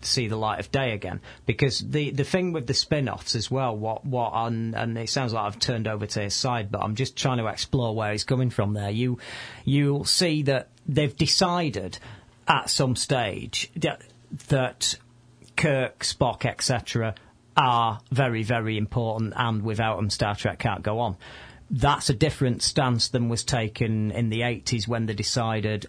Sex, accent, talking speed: male, British, 195 wpm